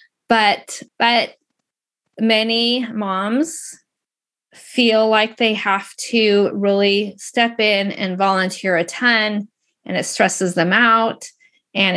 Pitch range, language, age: 190-235 Hz, English, 20-39